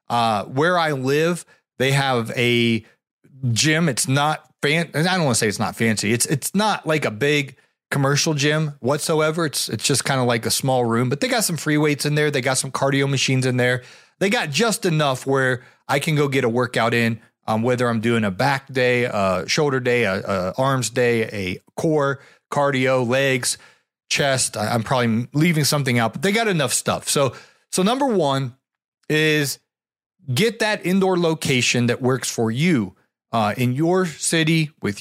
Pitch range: 125-160 Hz